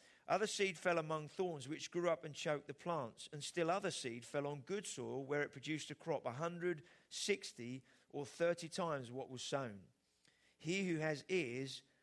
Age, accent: 40-59, British